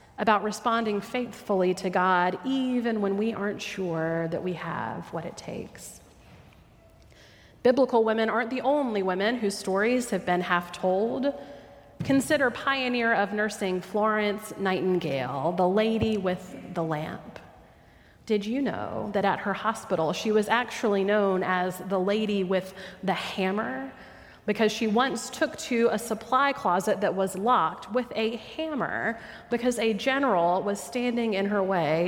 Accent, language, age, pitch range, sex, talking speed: American, English, 30-49, 180-225 Hz, female, 145 wpm